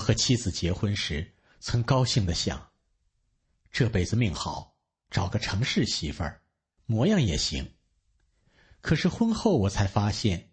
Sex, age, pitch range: male, 50-69, 90-130 Hz